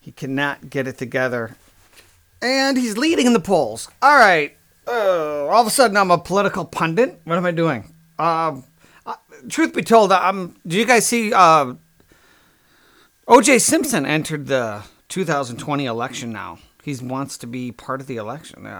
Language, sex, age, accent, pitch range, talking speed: English, male, 40-59, American, 135-200 Hz, 165 wpm